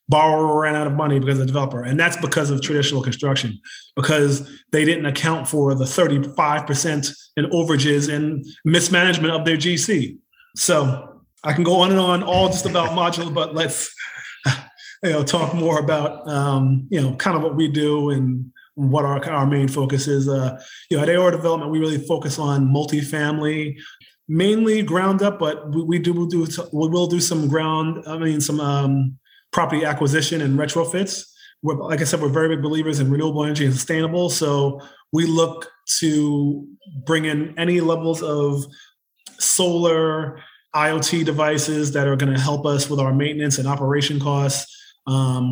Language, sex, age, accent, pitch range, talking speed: English, male, 30-49, American, 140-160 Hz, 175 wpm